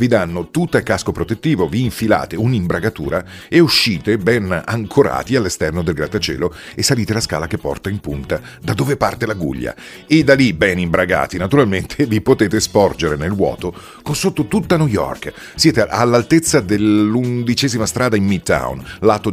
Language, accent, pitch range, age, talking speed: Italian, native, 90-120 Hz, 40-59, 160 wpm